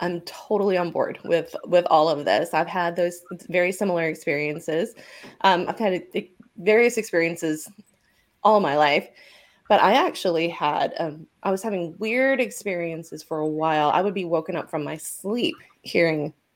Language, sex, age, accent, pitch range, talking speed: English, female, 20-39, American, 165-220 Hz, 165 wpm